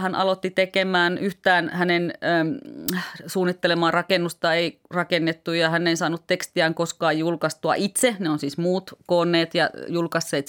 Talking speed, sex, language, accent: 145 wpm, female, Finnish, native